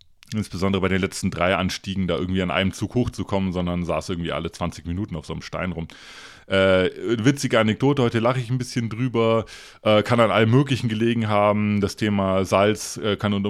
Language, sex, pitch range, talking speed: German, male, 90-115 Hz, 200 wpm